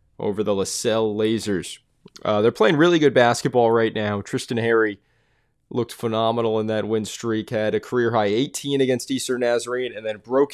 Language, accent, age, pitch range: English, American, 20-39, 105-125 Hz